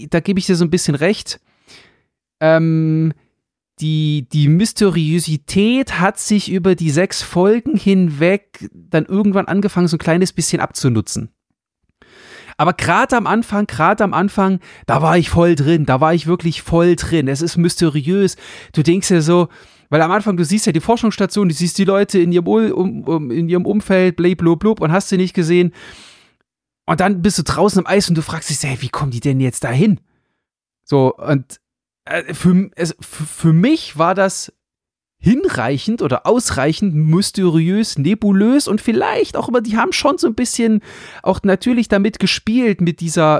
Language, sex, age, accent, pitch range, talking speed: German, male, 30-49, German, 160-205 Hz, 175 wpm